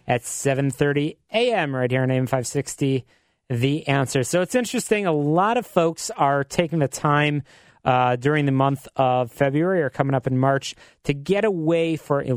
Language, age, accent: English, 30-49, American